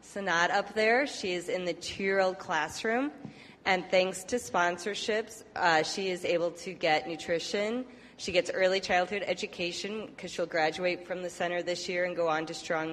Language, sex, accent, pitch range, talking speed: English, female, American, 170-200 Hz, 185 wpm